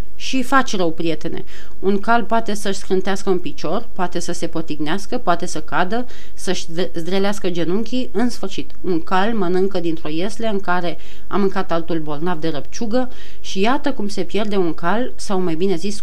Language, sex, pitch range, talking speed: Romanian, female, 170-220 Hz, 175 wpm